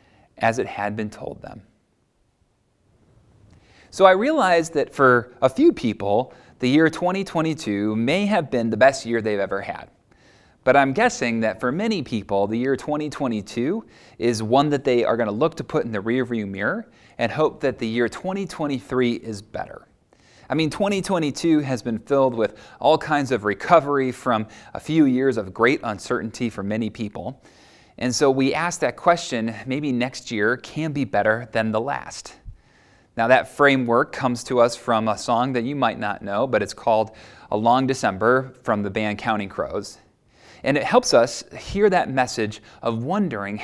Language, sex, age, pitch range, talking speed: English, male, 30-49, 115-155 Hz, 175 wpm